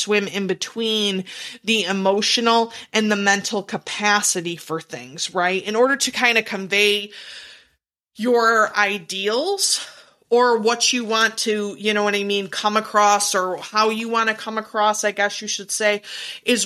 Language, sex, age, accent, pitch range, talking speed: English, female, 30-49, American, 190-220 Hz, 160 wpm